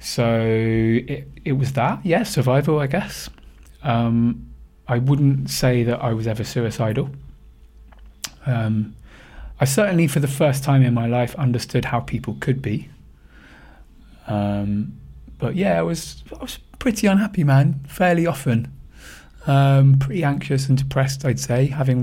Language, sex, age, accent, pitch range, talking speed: English, male, 20-39, British, 105-135 Hz, 145 wpm